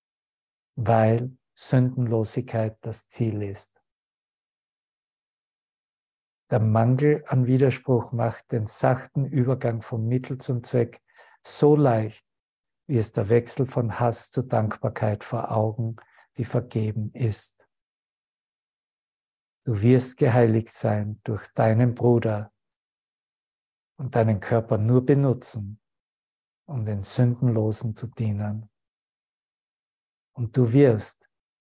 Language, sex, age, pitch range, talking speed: German, male, 60-79, 110-130 Hz, 100 wpm